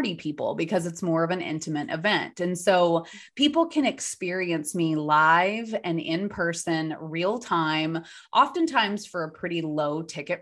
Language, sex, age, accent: English, female, 20-39, American